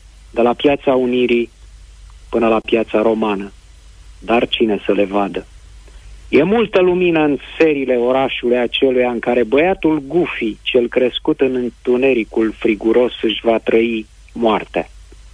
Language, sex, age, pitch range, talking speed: Romanian, male, 40-59, 110-130 Hz, 130 wpm